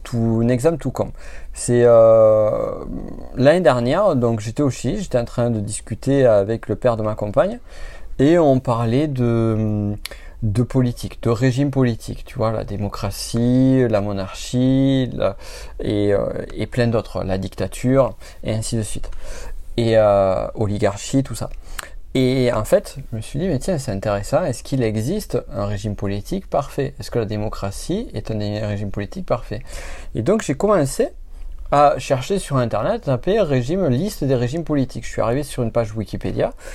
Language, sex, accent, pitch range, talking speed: French, male, French, 105-135 Hz, 170 wpm